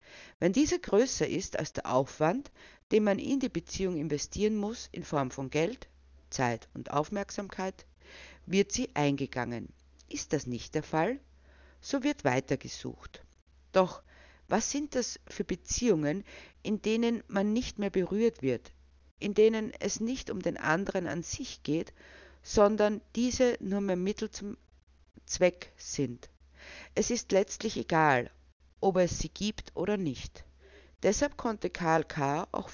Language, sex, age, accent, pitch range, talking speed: German, female, 50-69, Austrian, 125-205 Hz, 145 wpm